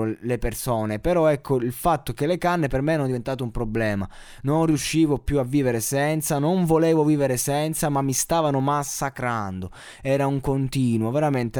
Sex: male